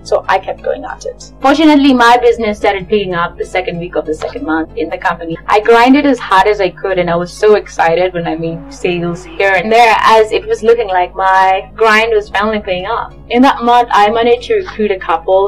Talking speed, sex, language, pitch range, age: 235 wpm, female, English, 175-225 Hz, 20-39